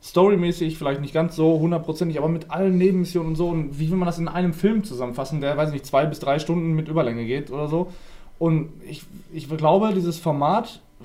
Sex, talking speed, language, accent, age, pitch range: male, 215 wpm, German, German, 20-39, 145-185 Hz